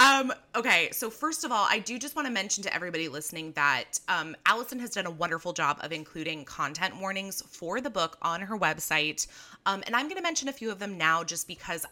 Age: 20-39